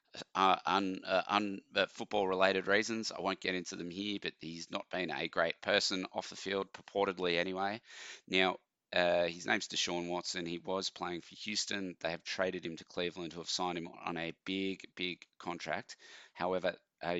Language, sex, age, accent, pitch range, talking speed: English, male, 30-49, Australian, 85-95 Hz, 180 wpm